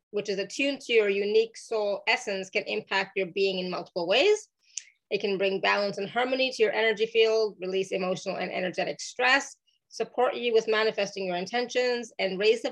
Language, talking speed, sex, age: English, 185 wpm, female, 30-49